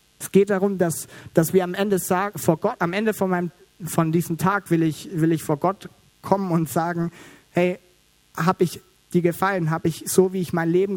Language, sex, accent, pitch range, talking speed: German, male, German, 145-175 Hz, 215 wpm